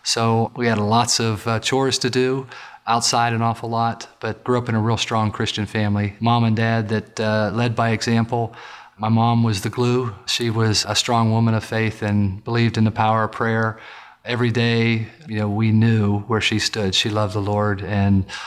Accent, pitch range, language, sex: American, 110-125 Hz, English, male